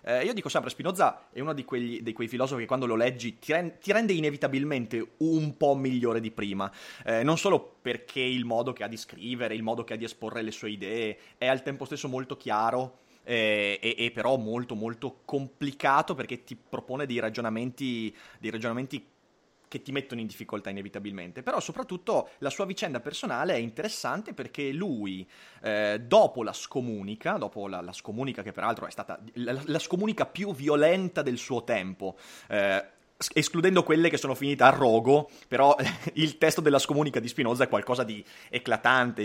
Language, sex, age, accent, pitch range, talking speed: Italian, male, 30-49, native, 115-175 Hz, 175 wpm